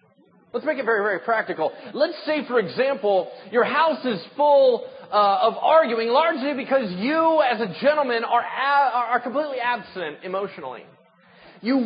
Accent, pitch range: American, 195-270 Hz